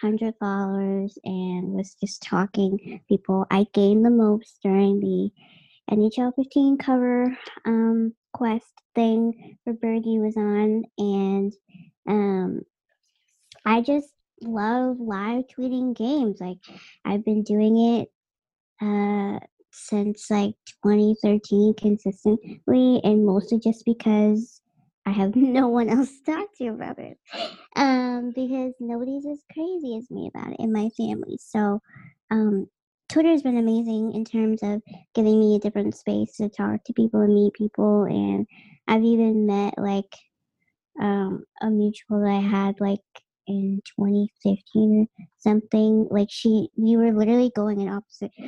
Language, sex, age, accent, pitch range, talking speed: English, male, 20-39, American, 200-235 Hz, 140 wpm